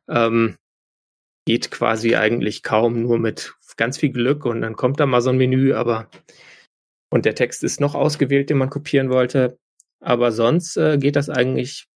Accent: German